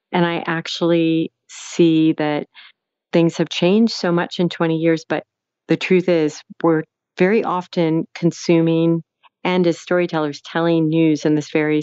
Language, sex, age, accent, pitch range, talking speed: English, female, 40-59, American, 150-165 Hz, 145 wpm